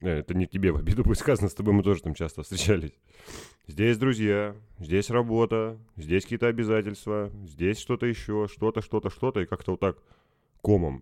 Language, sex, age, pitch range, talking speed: Russian, male, 30-49, 80-105 Hz, 175 wpm